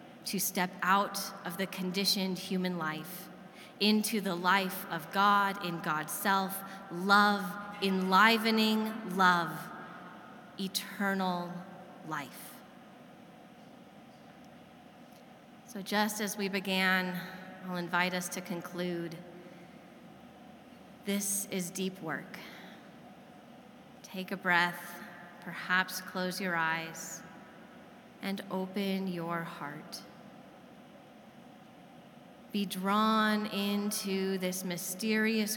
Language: English